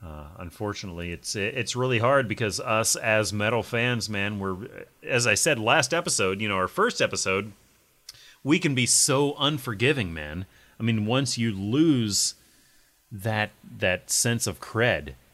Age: 30-49